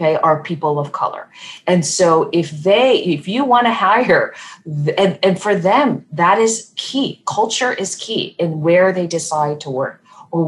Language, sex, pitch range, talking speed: English, female, 145-185 Hz, 170 wpm